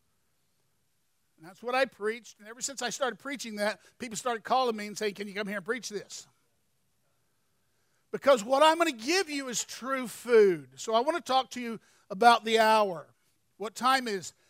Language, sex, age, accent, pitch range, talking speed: English, male, 50-69, American, 195-255 Hz, 195 wpm